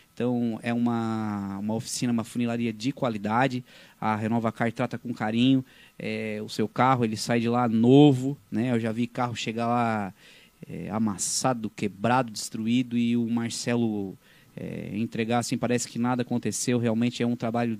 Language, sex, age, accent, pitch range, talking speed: Portuguese, male, 20-39, Brazilian, 115-135 Hz, 165 wpm